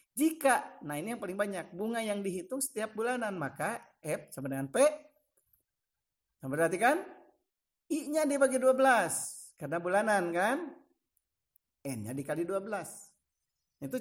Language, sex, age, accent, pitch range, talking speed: Indonesian, male, 50-69, native, 135-200 Hz, 120 wpm